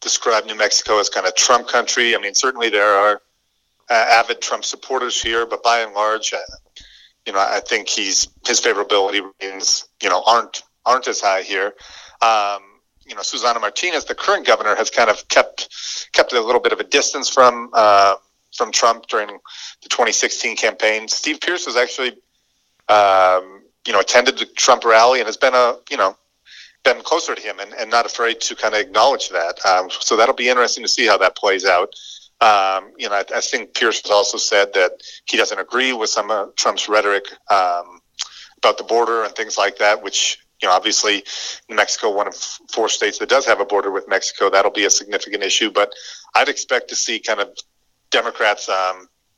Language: English